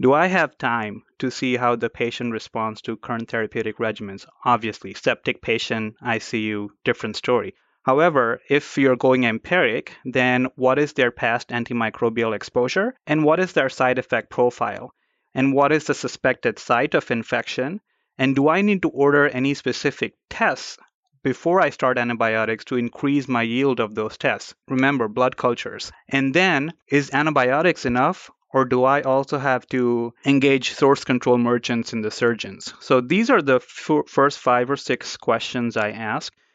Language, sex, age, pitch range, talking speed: English, male, 30-49, 120-140 Hz, 165 wpm